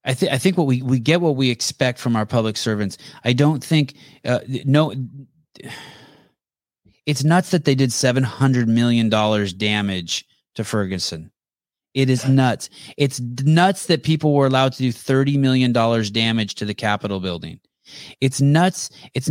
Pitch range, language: 125-160 Hz, English